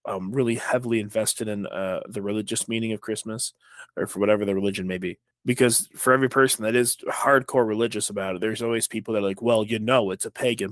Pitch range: 110-140 Hz